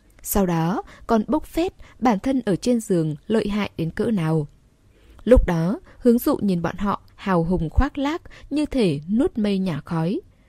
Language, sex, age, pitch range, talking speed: Vietnamese, female, 10-29, 165-230 Hz, 185 wpm